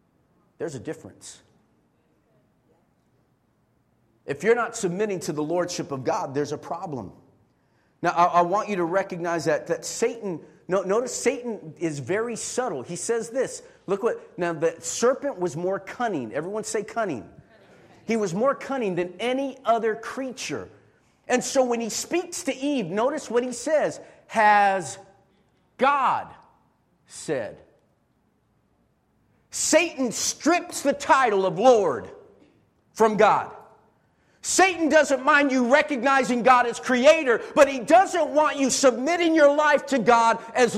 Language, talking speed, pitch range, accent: English, 135 wpm, 195-285 Hz, American